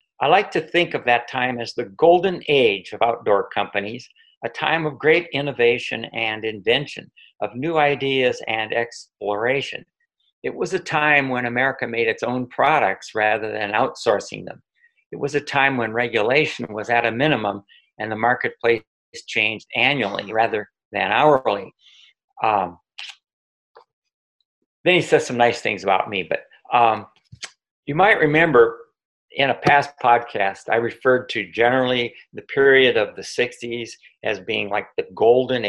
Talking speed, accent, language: 150 wpm, American, English